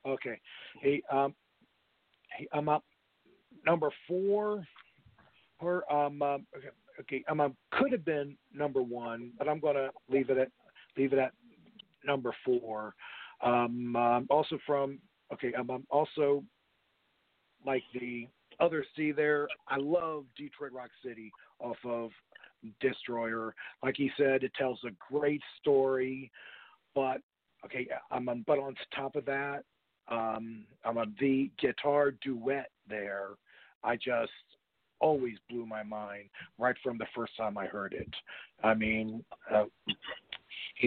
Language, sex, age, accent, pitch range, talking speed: English, male, 40-59, American, 115-145 Hz, 135 wpm